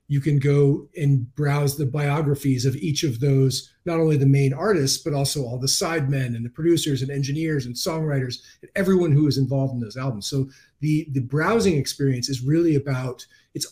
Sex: male